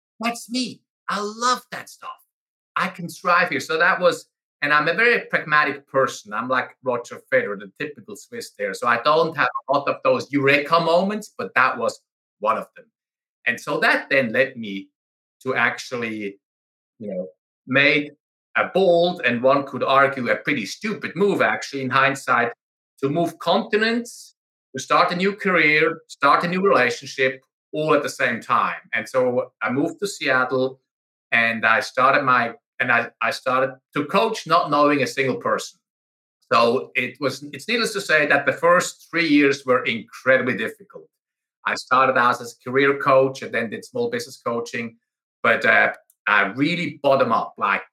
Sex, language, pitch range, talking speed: male, English, 130-210 Hz, 175 wpm